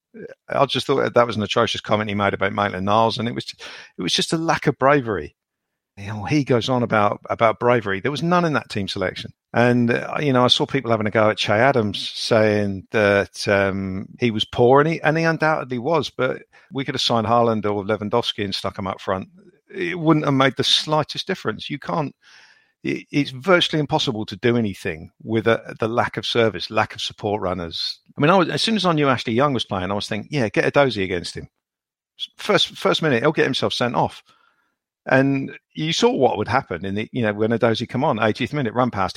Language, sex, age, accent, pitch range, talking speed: English, male, 50-69, British, 100-135 Hz, 225 wpm